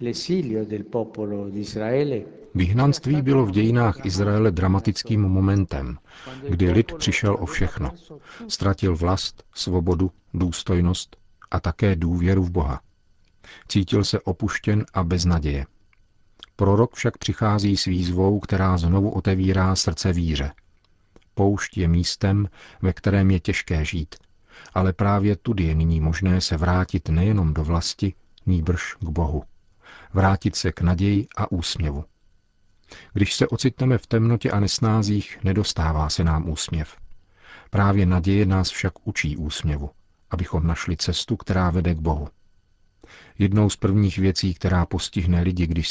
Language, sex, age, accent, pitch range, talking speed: Czech, male, 50-69, native, 85-100 Hz, 125 wpm